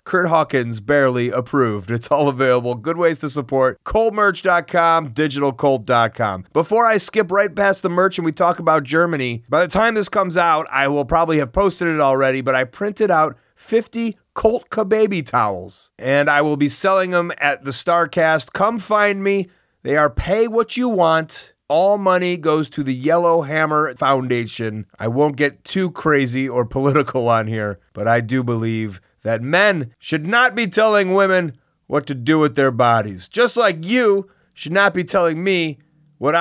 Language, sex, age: English, male, 30-49